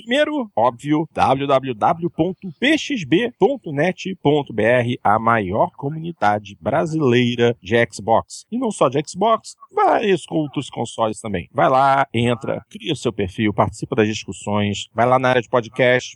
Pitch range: 110-145 Hz